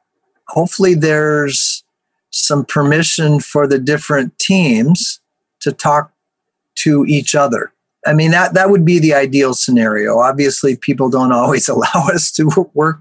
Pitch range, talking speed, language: 135-170 Hz, 140 wpm, English